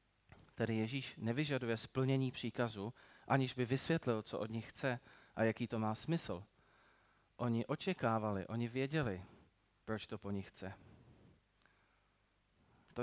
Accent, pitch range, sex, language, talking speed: native, 105-130 Hz, male, Czech, 125 wpm